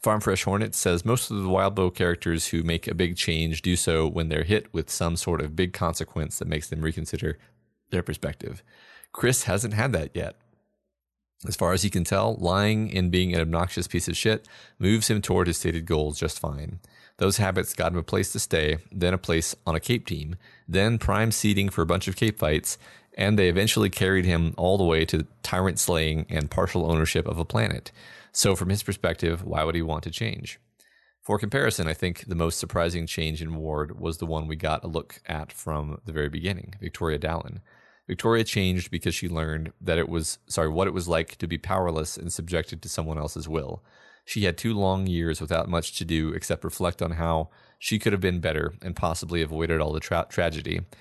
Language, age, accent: English, 30-49, American